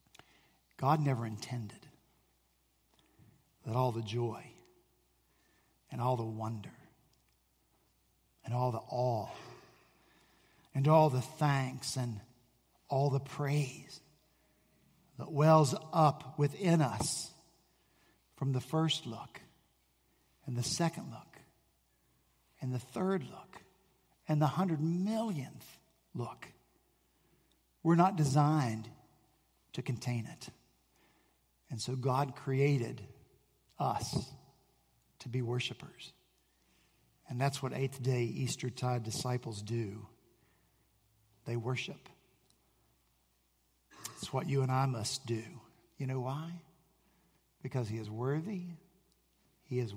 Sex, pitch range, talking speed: male, 105-145 Hz, 100 wpm